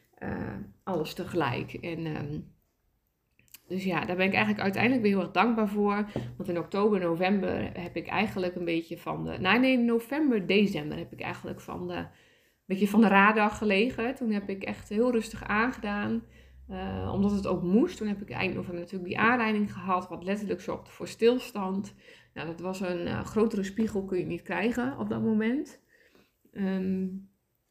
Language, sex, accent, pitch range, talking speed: Dutch, female, Dutch, 180-220 Hz, 180 wpm